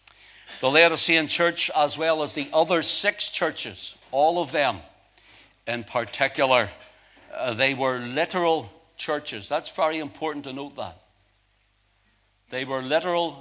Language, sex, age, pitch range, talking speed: English, male, 60-79, 125-165 Hz, 130 wpm